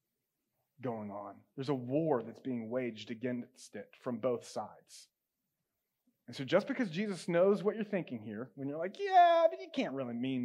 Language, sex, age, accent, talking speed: English, male, 30-49, American, 185 wpm